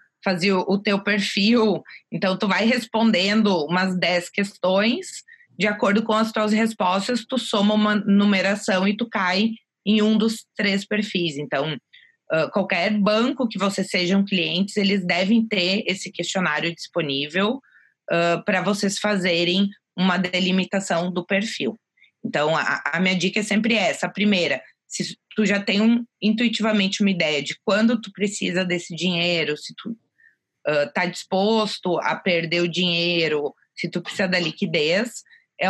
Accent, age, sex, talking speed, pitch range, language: Brazilian, 20-39, female, 145 wpm, 180-215 Hz, Portuguese